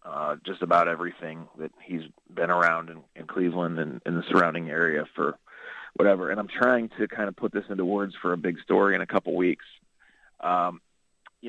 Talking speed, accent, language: 205 wpm, American, English